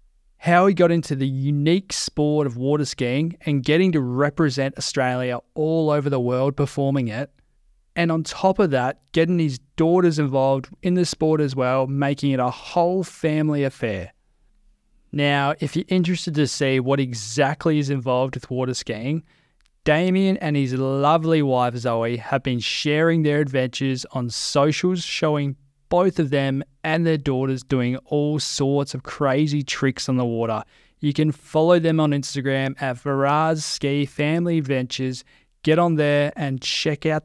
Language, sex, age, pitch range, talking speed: English, male, 20-39, 130-155 Hz, 160 wpm